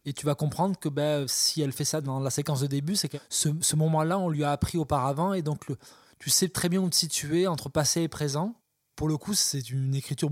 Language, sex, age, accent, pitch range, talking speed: French, male, 20-39, French, 140-160 Hz, 260 wpm